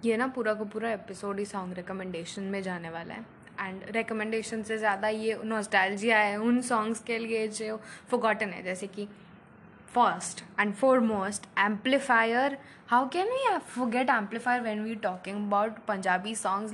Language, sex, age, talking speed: Hindi, female, 10-29, 160 wpm